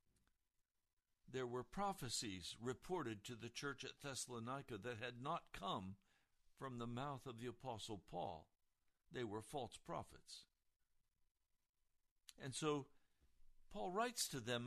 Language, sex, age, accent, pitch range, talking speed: English, male, 60-79, American, 115-155 Hz, 125 wpm